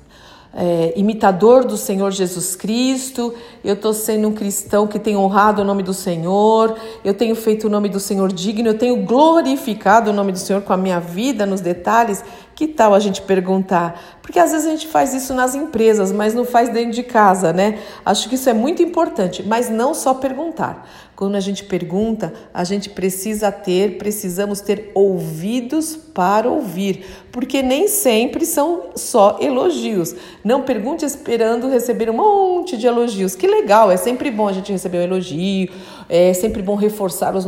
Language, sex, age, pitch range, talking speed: Portuguese, female, 50-69, 190-245 Hz, 180 wpm